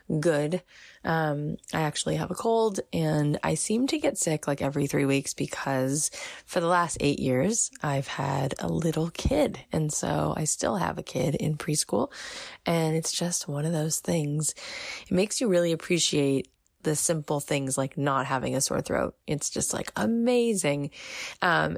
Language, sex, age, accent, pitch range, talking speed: English, female, 20-39, American, 140-170 Hz, 175 wpm